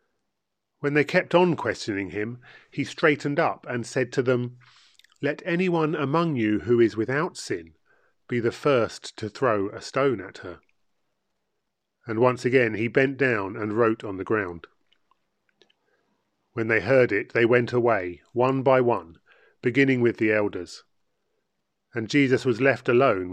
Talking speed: 155 wpm